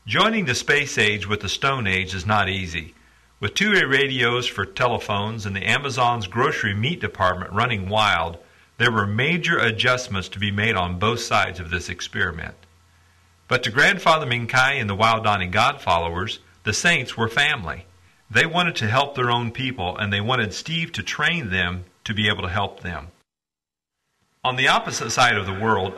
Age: 50-69